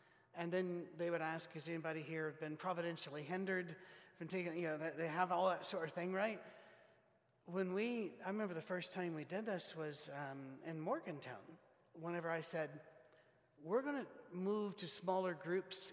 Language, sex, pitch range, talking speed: English, male, 165-200 Hz, 175 wpm